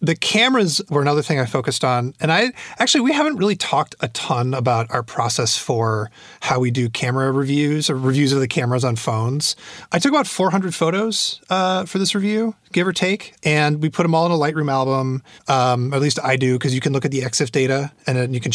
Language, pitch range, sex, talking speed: English, 125-165 Hz, male, 230 wpm